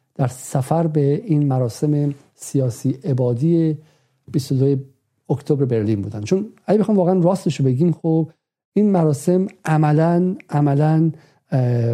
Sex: male